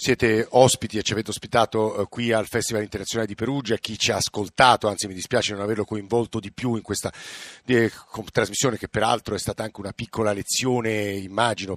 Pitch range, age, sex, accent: 100-125 Hz, 50-69, male, native